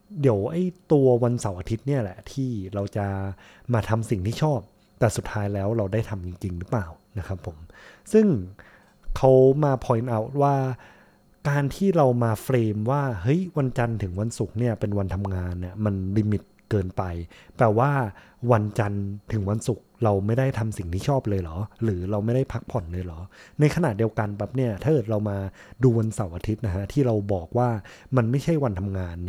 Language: Thai